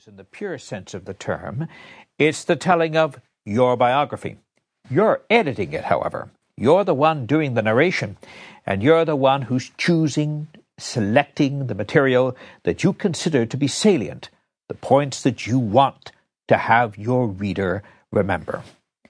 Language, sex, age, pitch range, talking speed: English, male, 60-79, 130-180 Hz, 150 wpm